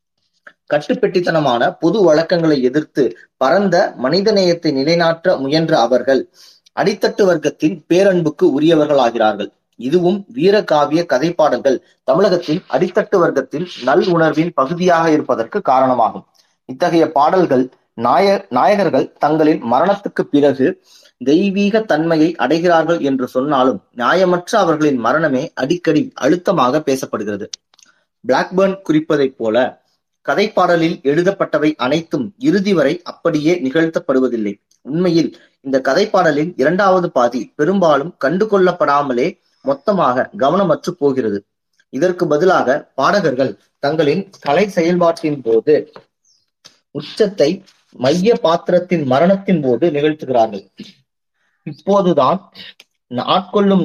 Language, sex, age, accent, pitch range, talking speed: Tamil, male, 20-39, native, 145-185 Hz, 90 wpm